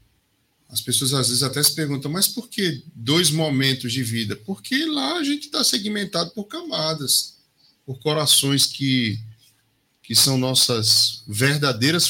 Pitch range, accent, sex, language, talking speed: 115-160 Hz, Brazilian, male, Portuguese, 145 wpm